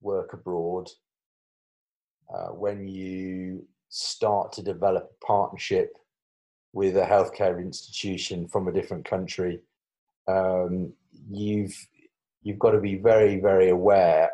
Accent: British